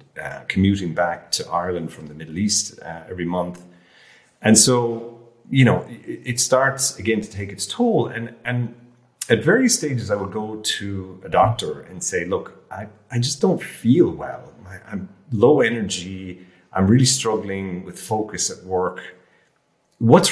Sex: male